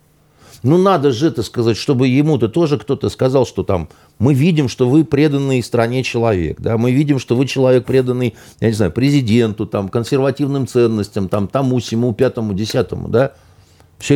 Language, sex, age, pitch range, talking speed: Russian, male, 50-69, 100-140 Hz, 170 wpm